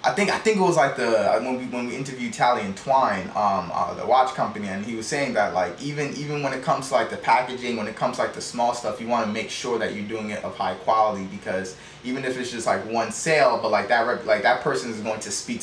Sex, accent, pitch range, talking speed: male, American, 110-140 Hz, 290 wpm